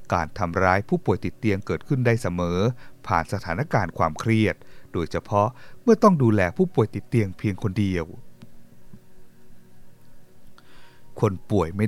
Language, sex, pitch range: Thai, male, 90-120 Hz